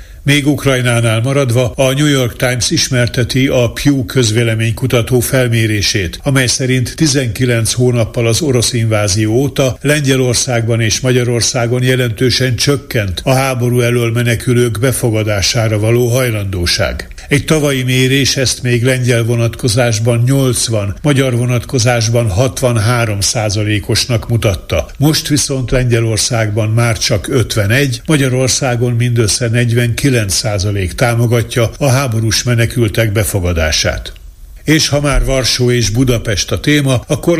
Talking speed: 110 wpm